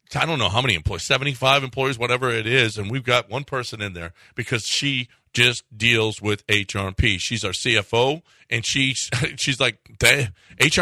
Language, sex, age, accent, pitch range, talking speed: English, male, 40-59, American, 115-150 Hz, 205 wpm